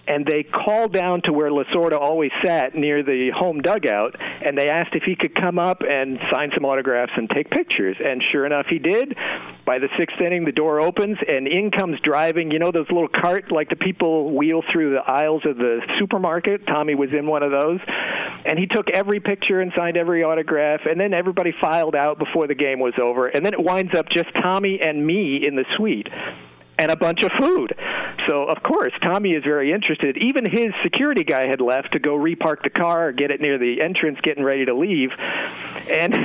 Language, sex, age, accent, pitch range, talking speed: English, male, 50-69, American, 145-190 Hz, 215 wpm